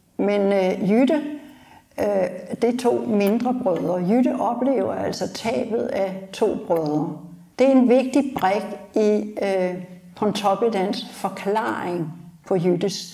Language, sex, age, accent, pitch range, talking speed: Danish, female, 60-79, native, 190-240 Hz, 110 wpm